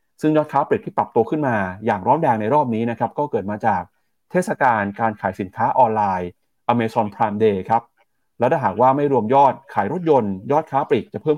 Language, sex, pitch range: Thai, male, 110-145 Hz